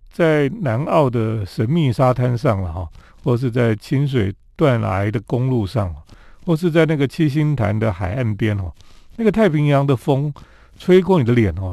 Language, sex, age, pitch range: Chinese, male, 40-59, 100-140 Hz